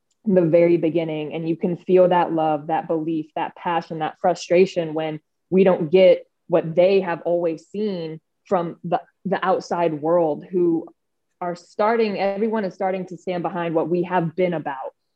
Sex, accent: female, American